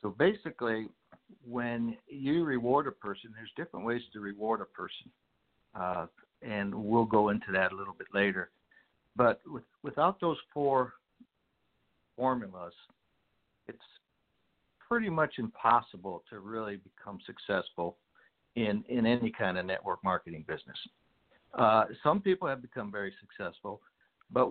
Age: 60-79